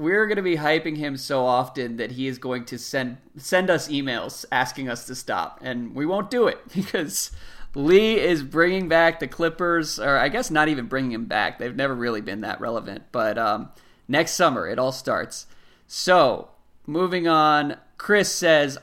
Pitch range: 130-160 Hz